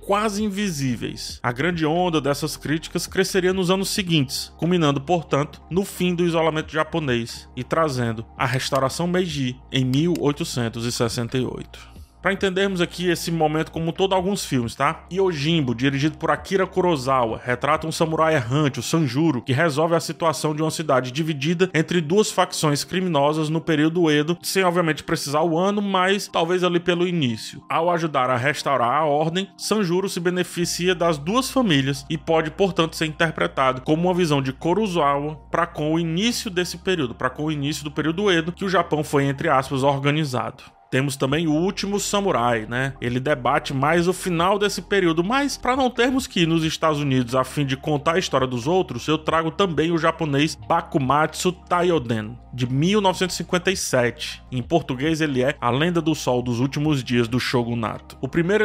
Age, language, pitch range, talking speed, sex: 20-39, Portuguese, 140-180 Hz, 170 wpm, male